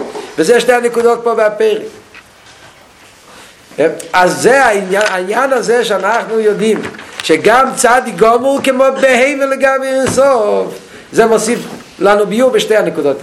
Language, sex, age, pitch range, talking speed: Hebrew, male, 50-69, 210-260 Hz, 115 wpm